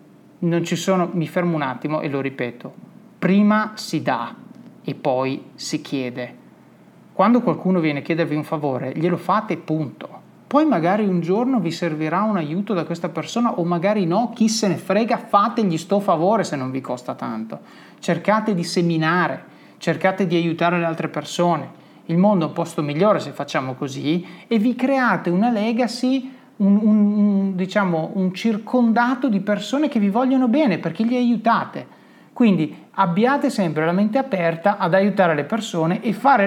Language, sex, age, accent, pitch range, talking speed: Italian, male, 30-49, native, 165-220 Hz, 165 wpm